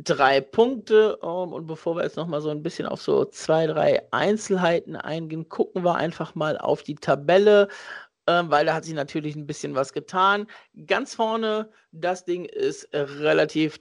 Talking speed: 165 wpm